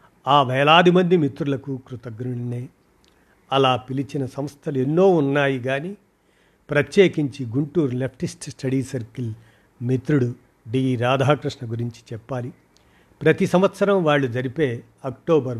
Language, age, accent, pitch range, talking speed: Telugu, 50-69, native, 125-150 Hz, 100 wpm